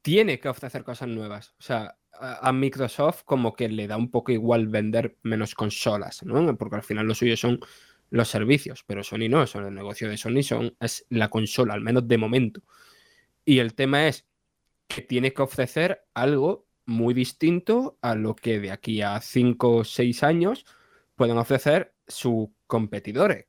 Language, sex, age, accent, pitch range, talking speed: Spanish, male, 20-39, Spanish, 115-145 Hz, 180 wpm